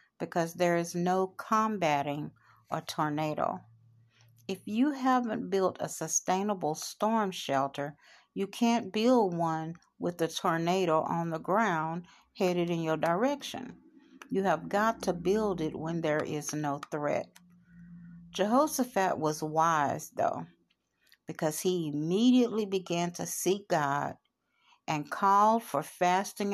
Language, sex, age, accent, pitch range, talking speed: English, female, 60-79, American, 155-195 Hz, 125 wpm